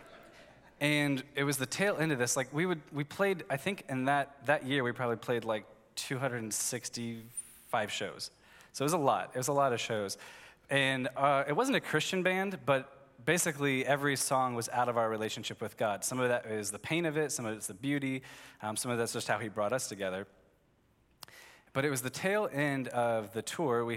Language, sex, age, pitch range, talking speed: English, male, 20-39, 115-140 Hz, 220 wpm